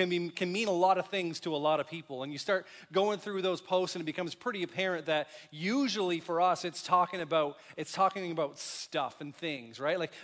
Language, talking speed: English, 235 wpm